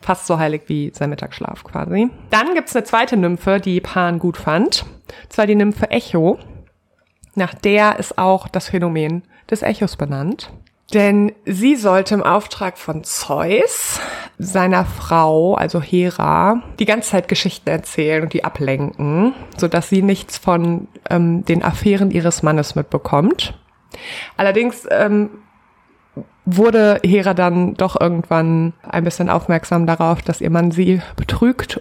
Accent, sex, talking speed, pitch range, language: German, female, 140 wpm, 170-205 Hz, German